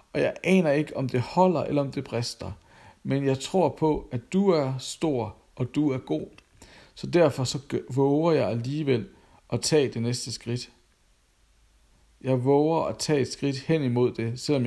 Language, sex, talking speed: Danish, male, 175 wpm